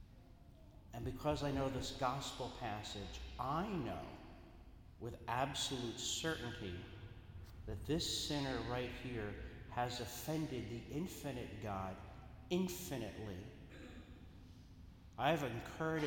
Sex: male